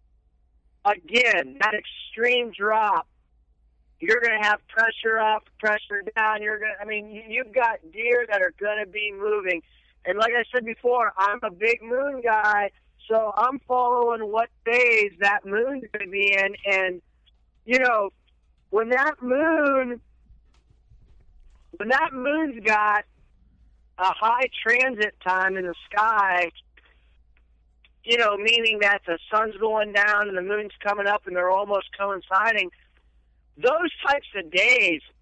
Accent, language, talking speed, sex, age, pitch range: American, English, 140 wpm, male, 40-59, 185-225 Hz